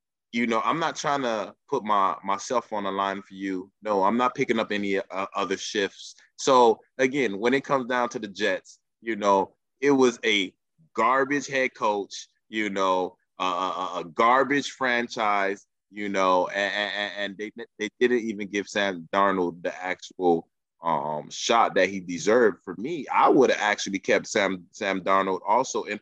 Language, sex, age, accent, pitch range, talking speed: English, male, 20-39, American, 95-125 Hz, 180 wpm